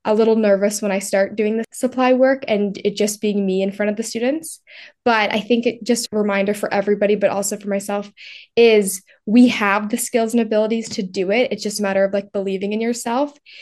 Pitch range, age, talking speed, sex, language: 200-240 Hz, 10-29, 230 wpm, female, English